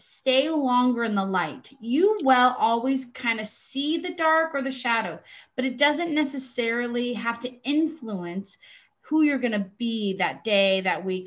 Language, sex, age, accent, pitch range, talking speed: English, female, 30-49, American, 205-260 Hz, 170 wpm